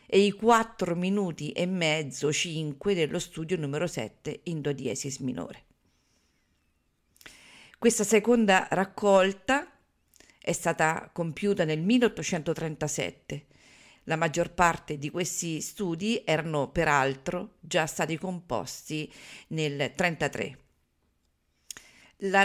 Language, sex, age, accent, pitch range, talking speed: Italian, female, 50-69, native, 150-195 Hz, 100 wpm